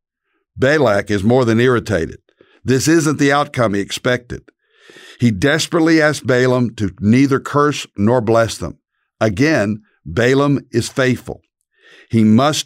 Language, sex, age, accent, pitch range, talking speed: English, male, 60-79, American, 110-145 Hz, 130 wpm